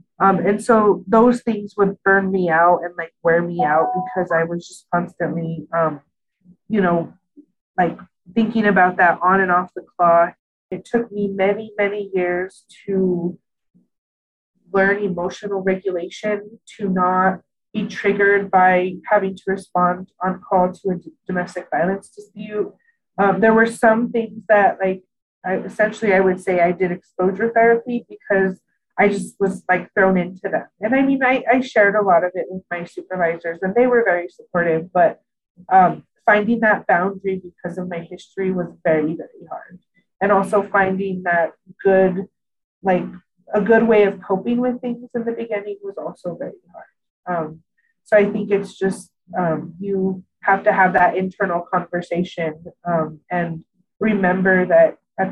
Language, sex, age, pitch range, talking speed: English, female, 30-49, 175-205 Hz, 165 wpm